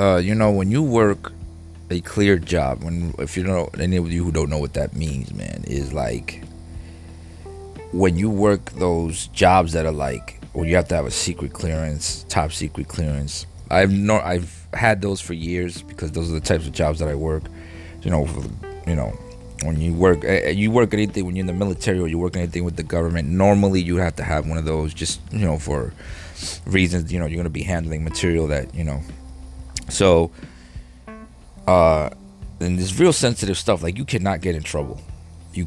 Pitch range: 80-100 Hz